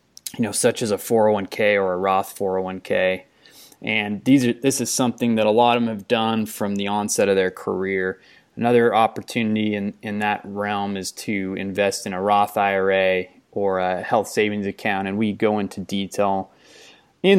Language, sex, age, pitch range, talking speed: English, male, 20-39, 100-120 Hz, 185 wpm